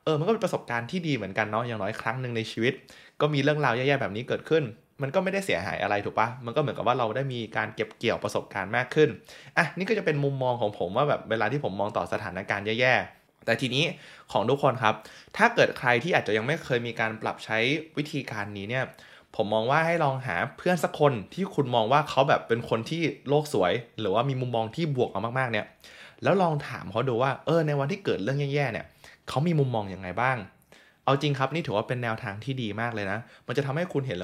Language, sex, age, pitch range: Thai, male, 20-39, 110-145 Hz